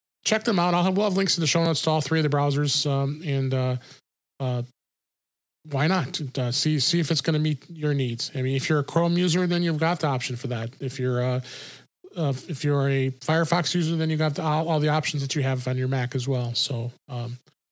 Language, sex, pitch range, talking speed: English, male, 135-160 Hz, 255 wpm